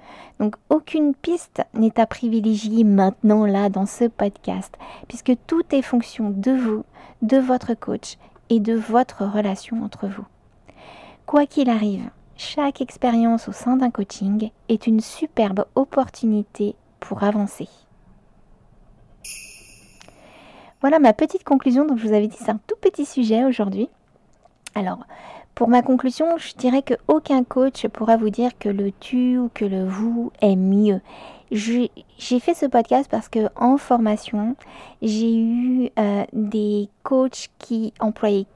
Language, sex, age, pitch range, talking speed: French, female, 50-69, 215-260 Hz, 145 wpm